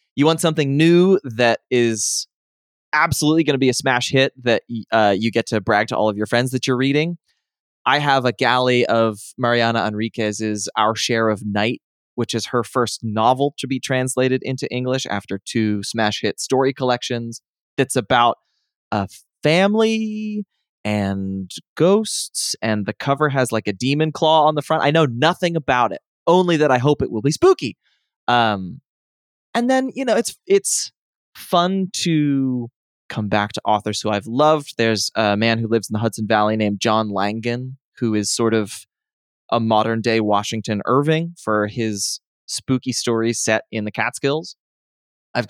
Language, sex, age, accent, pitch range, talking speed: English, male, 20-39, American, 110-150 Hz, 170 wpm